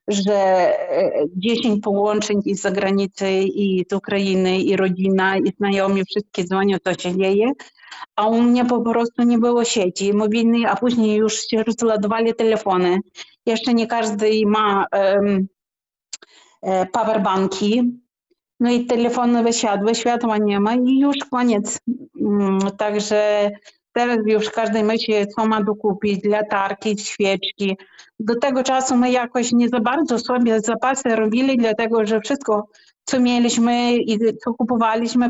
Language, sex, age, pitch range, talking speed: Polish, female, 40-59, 205-240 Hz, 135 wpm